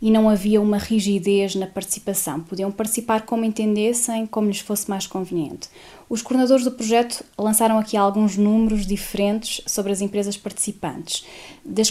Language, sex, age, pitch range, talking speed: Portuguese, female, 20-39, 185-225 Hz, 150 wpm